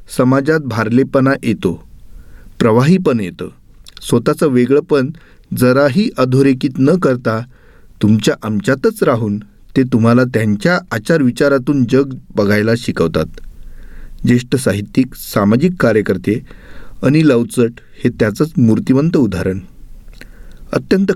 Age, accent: 40-59, native